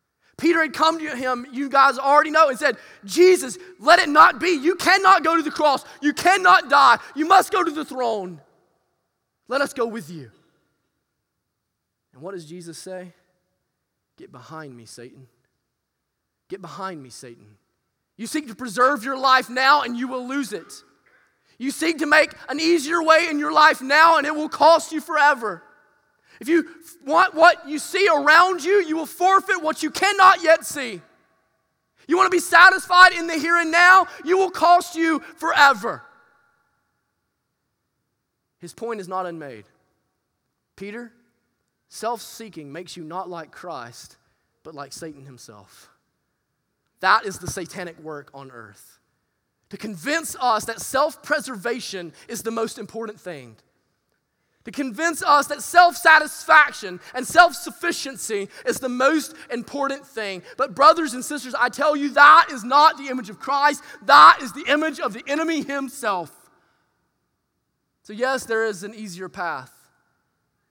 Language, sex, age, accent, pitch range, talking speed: English, male, 30-49, American, 210-320 Hz, 155 wpm